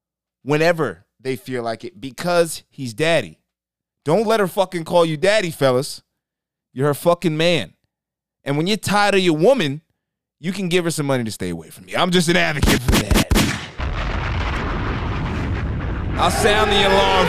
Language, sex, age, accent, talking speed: English, male, 30-49, American, 165 wpm